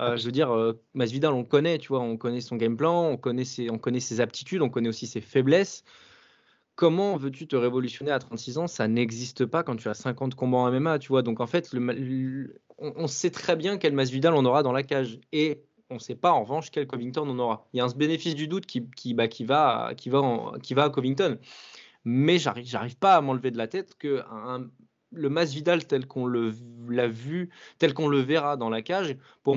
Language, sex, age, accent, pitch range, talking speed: French, male, 20-39, French, 125-155 Hz, 245 wpm